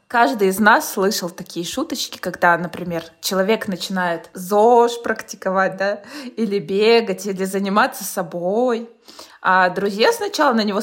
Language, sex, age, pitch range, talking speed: Russian, female, 20-39, 195-270 Hz, 125 wpm